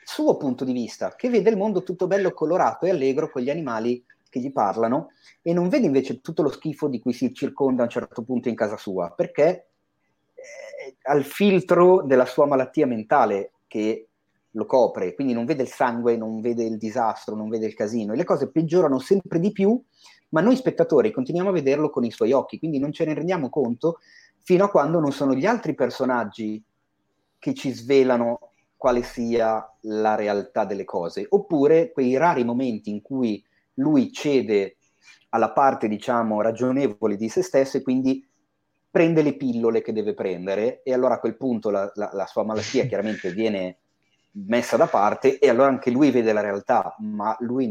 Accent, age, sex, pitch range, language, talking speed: native, 30-49, male, 115-170 Hz, Italian, 185 wpm